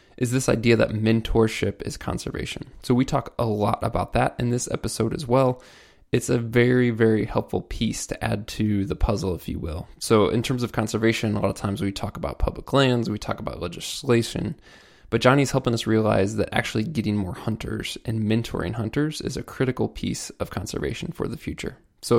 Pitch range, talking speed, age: 110-125 Hz, 200 wpm, 20-39